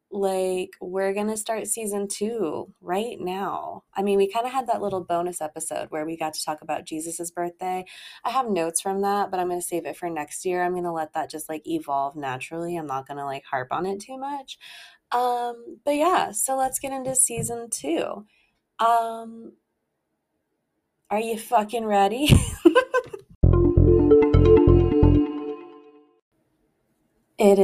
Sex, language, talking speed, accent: female, English, 165 wpm, American